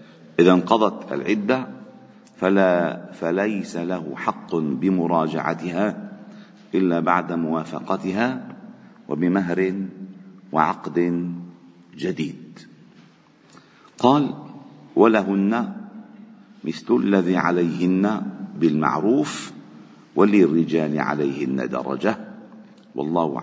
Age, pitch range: 50-69, 85-120 Hz